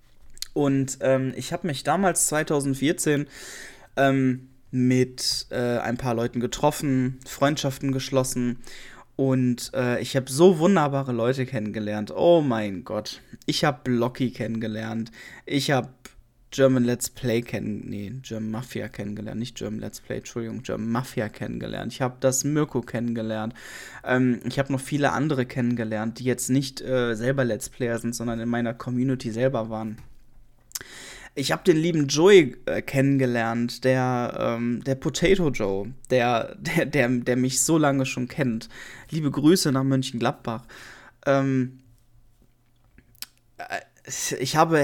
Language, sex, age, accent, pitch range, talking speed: German, male, 20-39, German, 120-140 Hz, 140 wpm